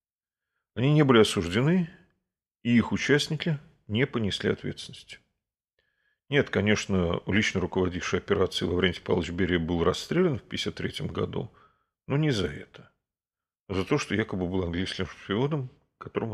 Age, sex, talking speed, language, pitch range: 40-59, male, 130 wpm, Russian, 95-125 Hz